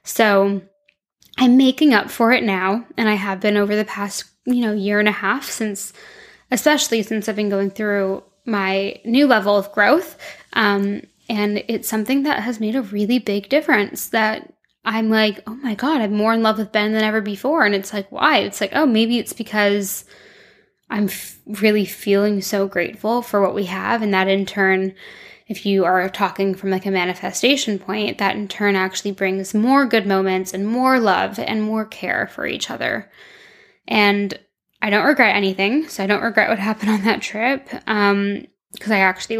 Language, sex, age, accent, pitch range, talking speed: English, female, 10-29, American, 195-225 Hz, 190 wpm